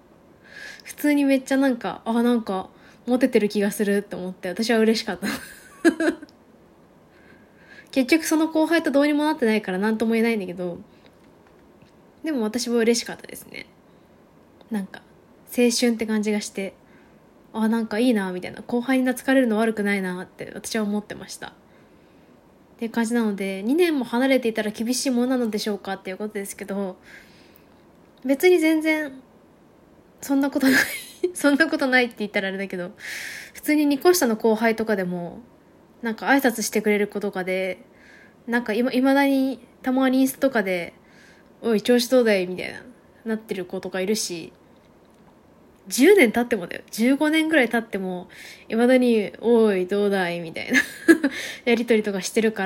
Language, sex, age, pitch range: Japanese, female, 20-39, 200-260 Hz